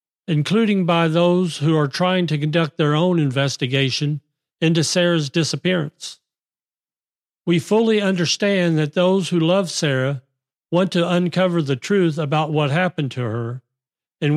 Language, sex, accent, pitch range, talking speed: English, male, American, 145-185 Hz, 140 wpm